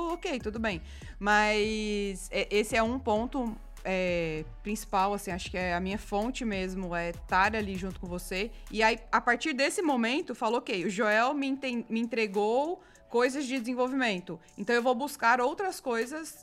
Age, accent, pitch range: 20-39, Brazilian, 205-240 Hz